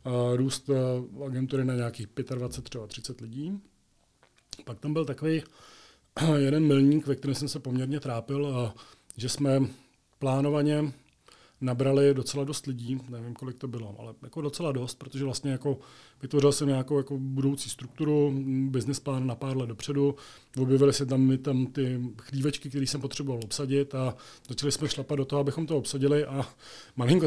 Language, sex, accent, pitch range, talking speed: Czech, male, native, 125-140 Hz, 155 wpm